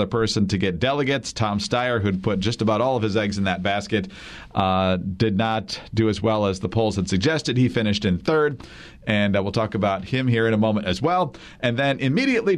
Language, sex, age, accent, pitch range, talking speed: English, male, 40-59, American, 105-145 Hz, 225 wpm